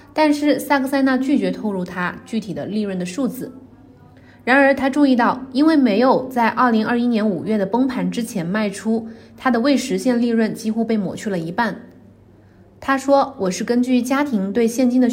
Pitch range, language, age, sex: 200-255 Hz, Chinese, 20-39, female